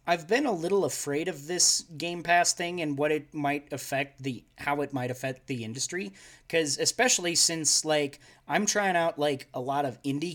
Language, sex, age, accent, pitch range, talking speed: English, male, 30-49, American, 135-170 Hz, 195 wpm